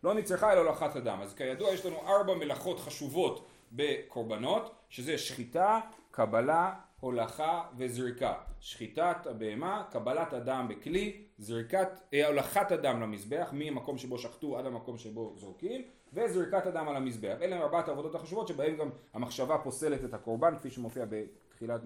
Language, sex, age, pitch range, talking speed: Hebrew, male, 30-49, 130-180 Hz, 140 wpm